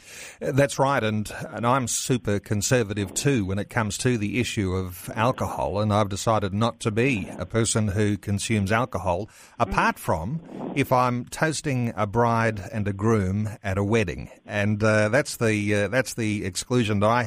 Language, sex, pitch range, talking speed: English, male, 105-140 Hz, 175 wpm